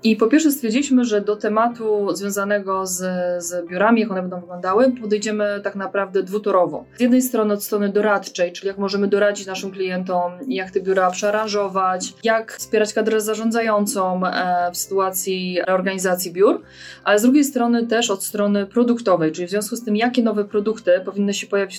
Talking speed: 170 wpm